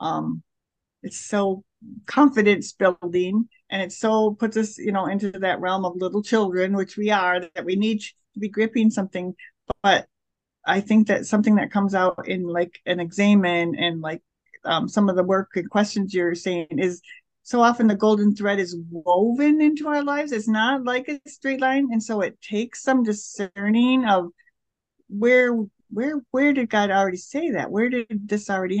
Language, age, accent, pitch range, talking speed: English, 50-69, American, 185-240 Hz, 185 wpm